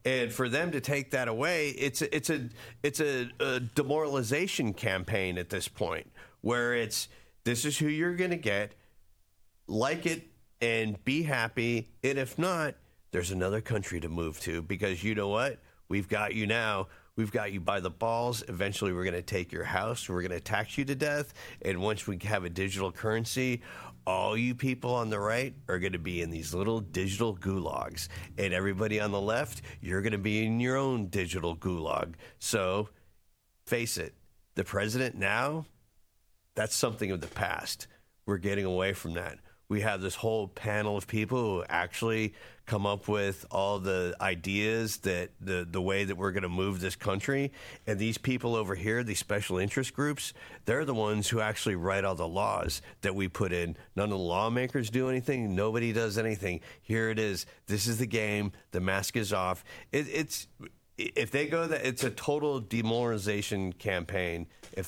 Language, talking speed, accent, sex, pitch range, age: English, 185 wpm, American, male, 95-120 Hz, 40-59